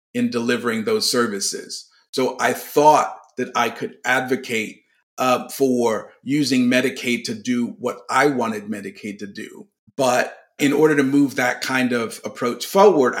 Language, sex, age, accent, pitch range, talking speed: English, male, 50-69, American, 120-155 Hz, 150 wpm